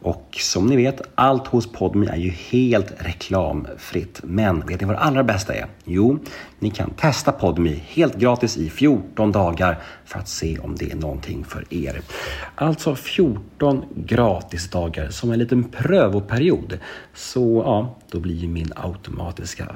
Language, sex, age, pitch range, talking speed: Swedish, male, 40-59, 85-115 Hz, 160 wpm